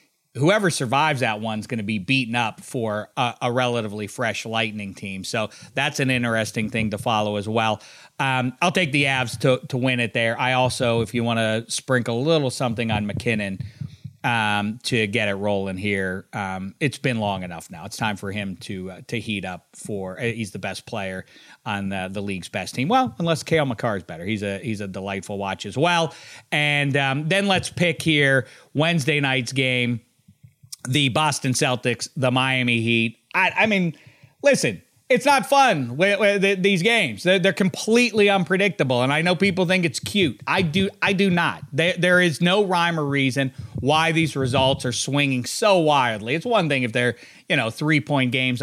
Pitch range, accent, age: 115-160 Hz, American, 40-59